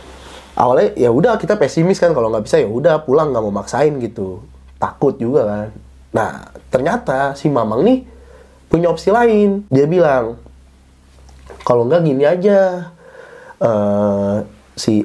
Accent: native